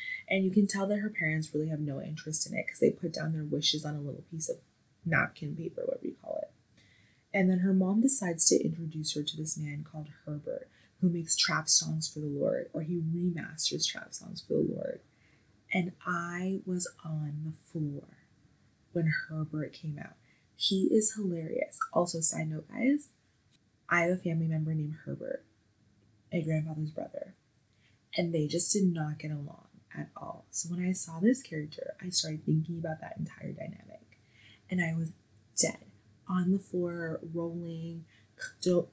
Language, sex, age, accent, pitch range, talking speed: English, female, 20-39, American, 155-180 Hz, 180 wpm